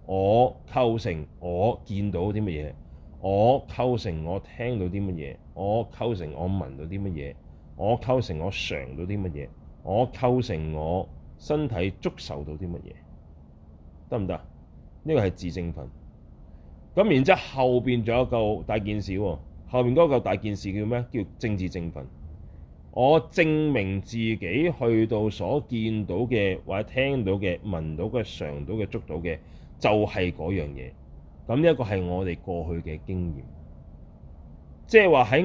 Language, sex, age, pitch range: Chinese, male, 30-49, 80-120 Hz